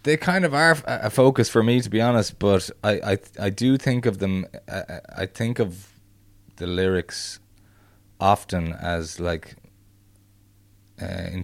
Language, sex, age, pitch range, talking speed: English, male, 20-39, 85-100 Hz, 155 wpm